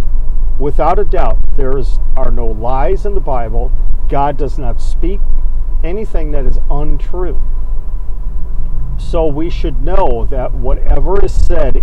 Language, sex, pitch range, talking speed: English, male, 115-155 Hz, 135 wpm